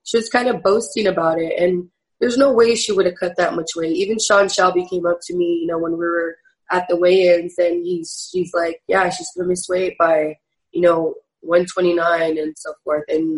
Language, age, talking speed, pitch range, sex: English, 20-39, 230 wpm, 175-210 Hz, female